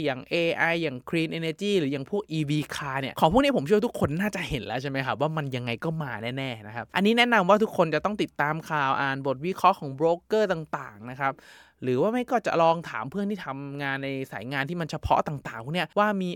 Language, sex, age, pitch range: Thai, male, 20-39, 130-175 Hz